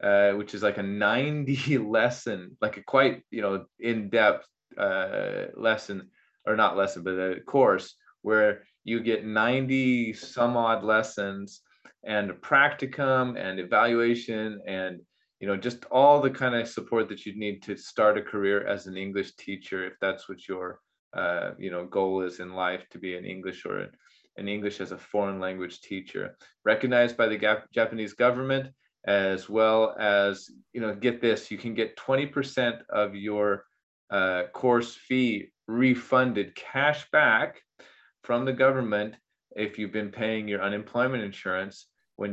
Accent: American